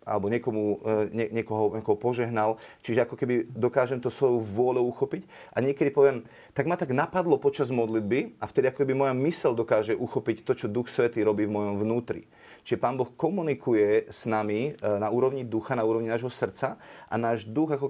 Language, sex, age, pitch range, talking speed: Slovak, male, 30-49, 110-135 Hz, 190 wpm